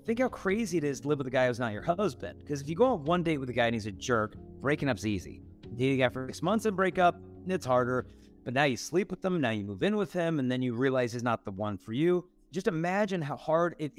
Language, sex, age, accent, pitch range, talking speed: Filipino, male, 40-59, American, 115-165 Hz, 295 wpm